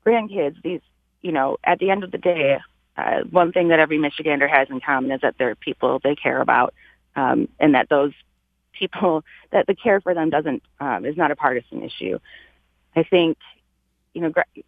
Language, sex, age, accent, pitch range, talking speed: English, female, 30-49, American, 135-160 Hz, 195 wpm